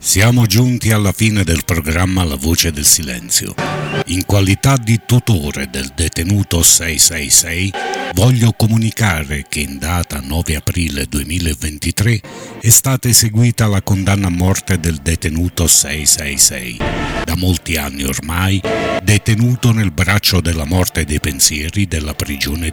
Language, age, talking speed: Italian, 60-79, 125 wpm